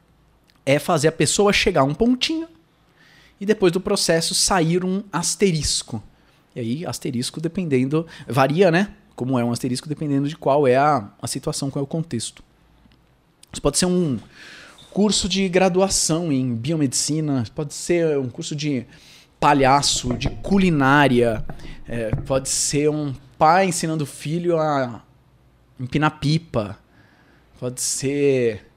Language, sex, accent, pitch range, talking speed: Portuguese, male, Brazilian, 125-165 Hz, 135 wpm